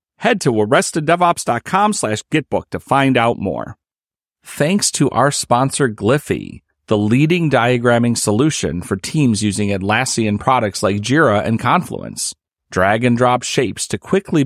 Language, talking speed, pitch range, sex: English, 130 wpm, 110-165 Hz, male